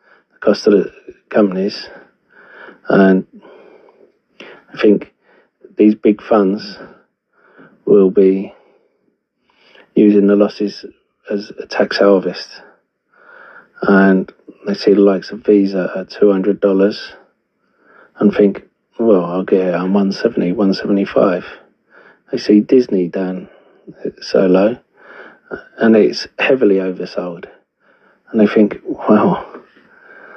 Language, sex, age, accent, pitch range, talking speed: English, male, 40-59, British, 95-110 Hz, 105 wpm